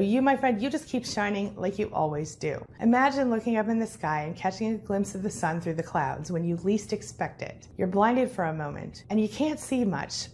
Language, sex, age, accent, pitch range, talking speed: English, female, 30-49, American, 175-240 Hz, 245 wpm